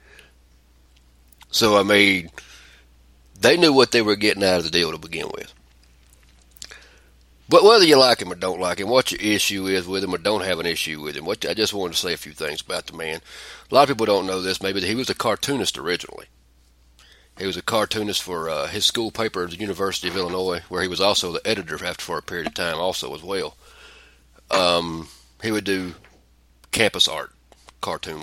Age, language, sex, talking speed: 40-59, English, male, 215 wpm